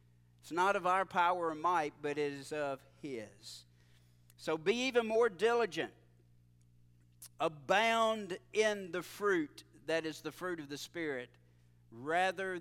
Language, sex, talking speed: English, male, 140 wpm